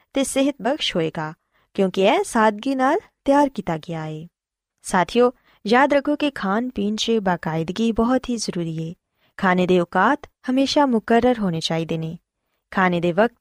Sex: female